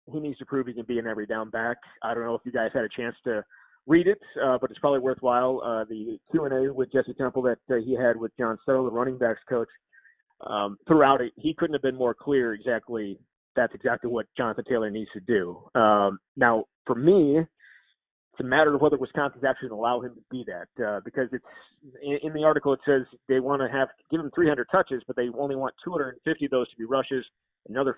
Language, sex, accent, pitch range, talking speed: English, male, American, 125-150 Hz, 225 wpm